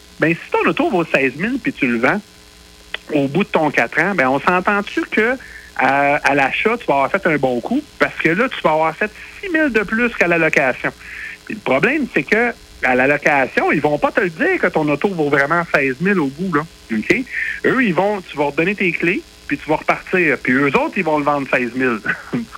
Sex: male